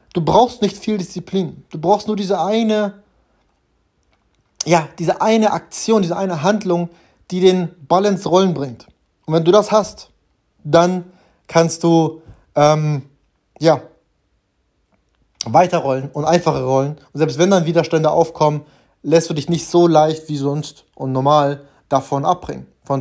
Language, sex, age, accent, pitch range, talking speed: German, male, 20-39, German, 135-170 Hz, 145 wpm